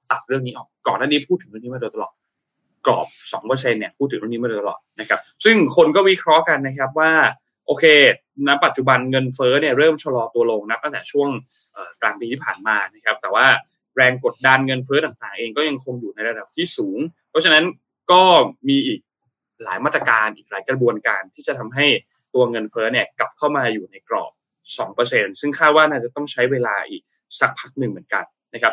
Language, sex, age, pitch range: Thai, male, 20-39, 125-180 Hz